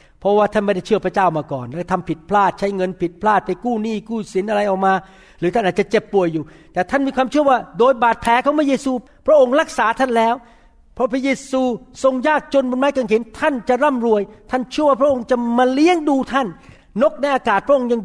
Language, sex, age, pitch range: Thai, male, 60-79, 185-255 Hz